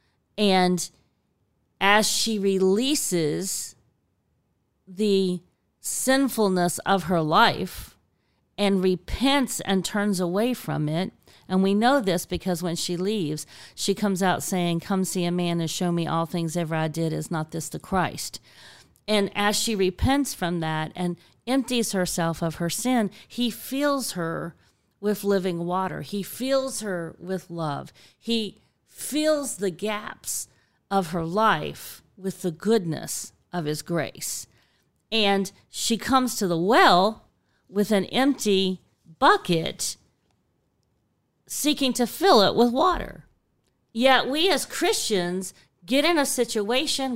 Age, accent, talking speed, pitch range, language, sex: 40-59, American, 135 wpm, 175-245 Hz, English, female